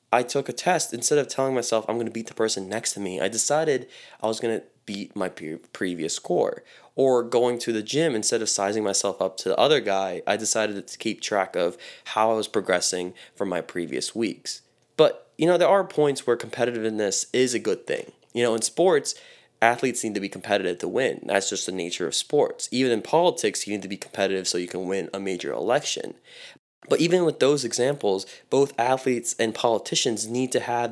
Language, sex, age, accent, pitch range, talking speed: English, male, 20-39, American, 100-135 Hz, 215 wpm